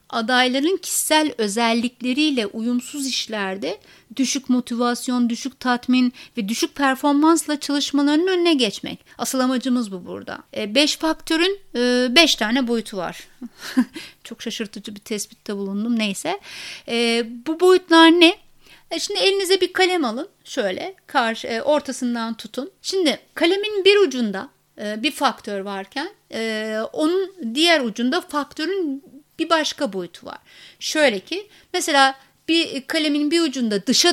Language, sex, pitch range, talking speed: Turkish, female, 230-315 Hz, 115 wpm